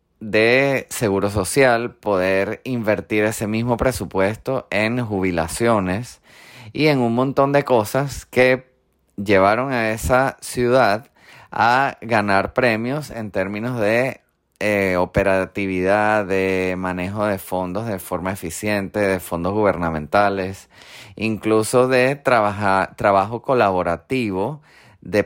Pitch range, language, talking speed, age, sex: 95-120 Hz, Spanish, 105 wpm, 30-49, male